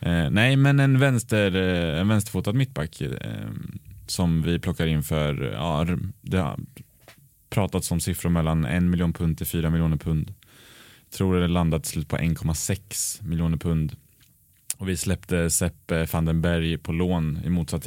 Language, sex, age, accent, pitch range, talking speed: Swedish, male, 20-39, Norwegian, 80-100 Hz, 150 wpm